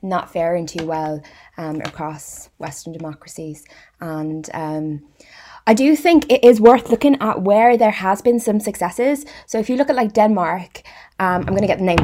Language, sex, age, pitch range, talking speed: English, female, 20-39, 165-205 Hz, 185 wpm